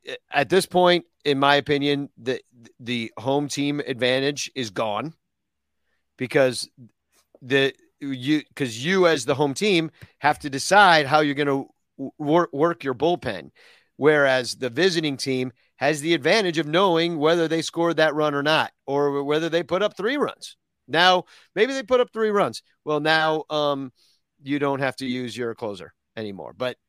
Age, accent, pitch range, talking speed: 40-59, American, 125-160 Hz, 165 wpm